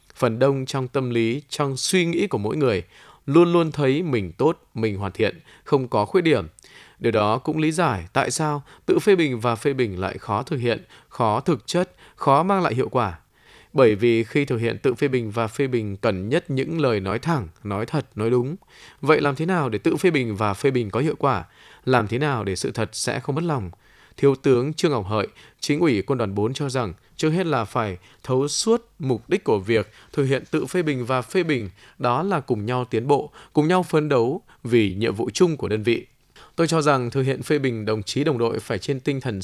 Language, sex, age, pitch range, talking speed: Vietnamese, male, 20-39, 115-155 Hz, 235 wpm